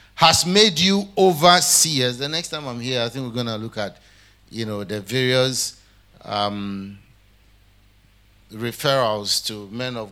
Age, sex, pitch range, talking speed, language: 50-69, male, 100-140 Hz, 150 wpm, English